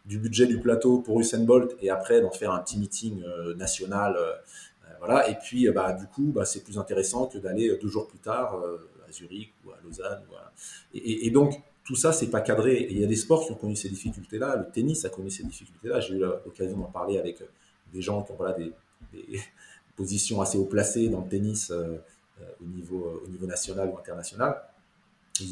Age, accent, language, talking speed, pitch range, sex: 30-49, French, French, 235 wpm, 100-130 Hz, male